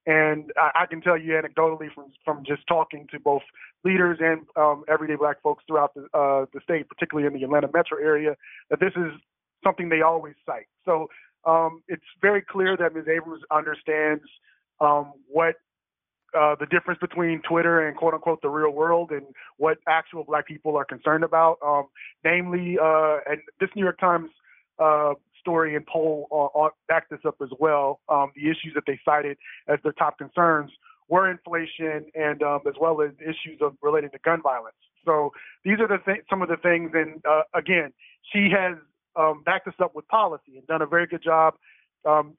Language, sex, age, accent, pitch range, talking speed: English, male, 30-49, American, 150-170 Hz, 190 wpm